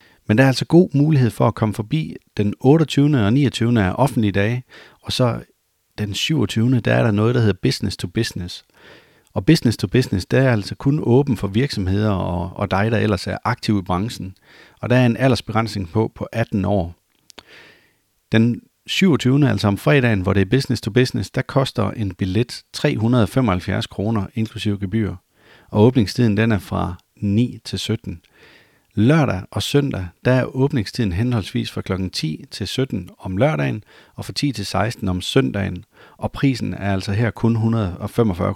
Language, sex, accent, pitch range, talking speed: Danish, male, native, 100-125 Hz, 175 wpm